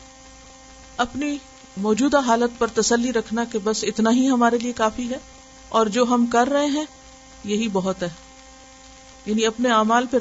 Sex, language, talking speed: female, Urdu, 160 wpm